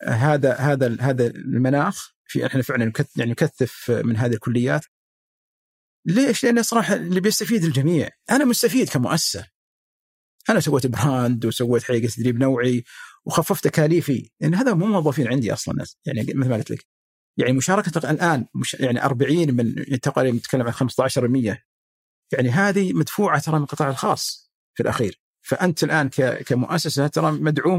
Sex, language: male, Arabic